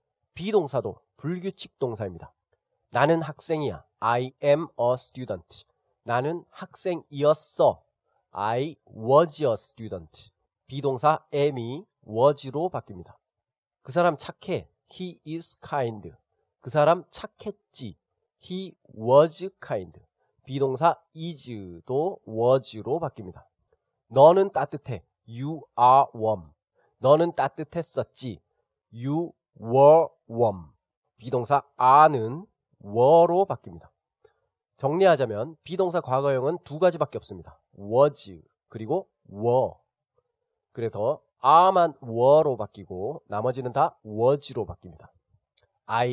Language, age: Korean, 40-59